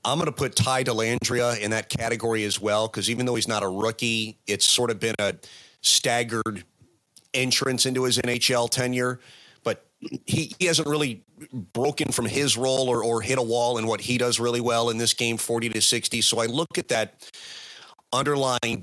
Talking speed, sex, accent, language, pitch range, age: 195 wpm, male, American, English, 110-125 Hz, 40-59